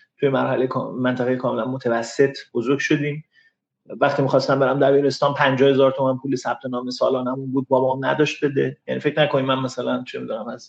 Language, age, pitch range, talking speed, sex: Persian, 30-49, 135-175 Hz, 175 wpm, male